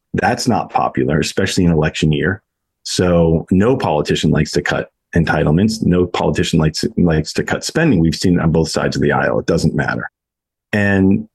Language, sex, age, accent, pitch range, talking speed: English, male, 40-59, American, 90-110 Hz, 180 wpm